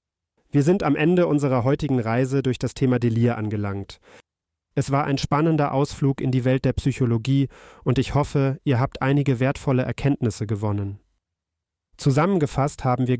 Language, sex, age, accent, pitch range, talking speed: German, male, 40-59, German, 120-140 Hz, 155 wpm